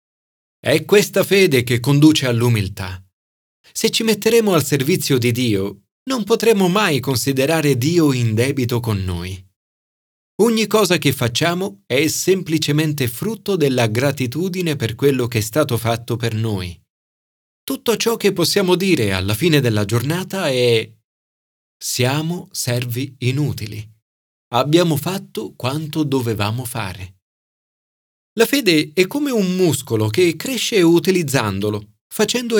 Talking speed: 125 wpm